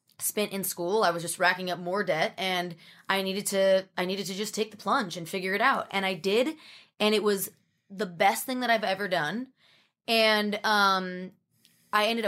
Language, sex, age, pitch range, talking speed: English, female, 20-39, 180-215 Hz, 205 wpm